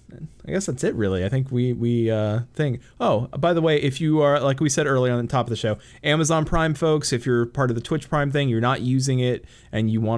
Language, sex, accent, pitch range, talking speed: English, male, American, 110-140 Hz, 270 wpm